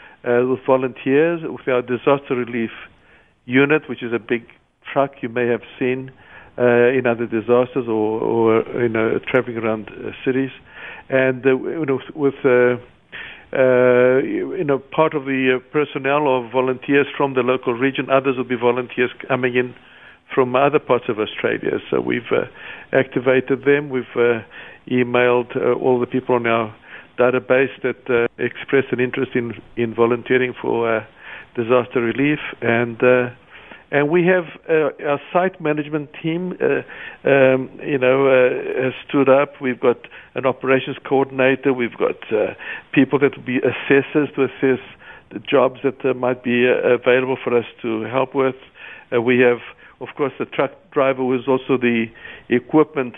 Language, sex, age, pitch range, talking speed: English, male, 50-69, 120-135 Hz, 160 wpm